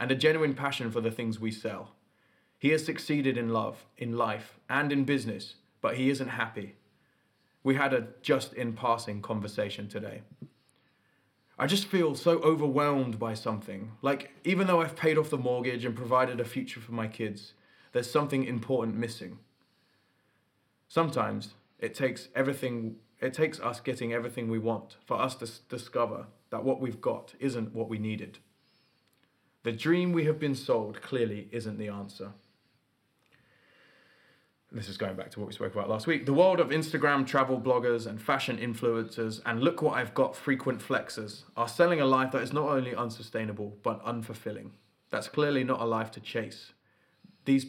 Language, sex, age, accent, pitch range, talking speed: English, male, 20-39, British, 110-135 Hz, 170 wpm